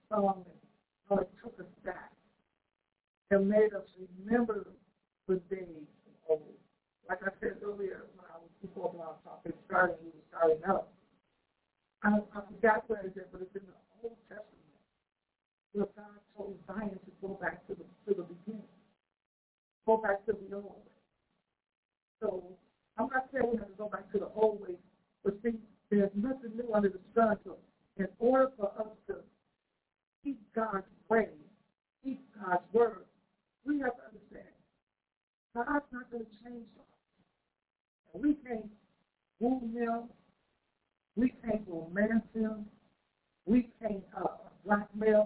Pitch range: 195-225 Hz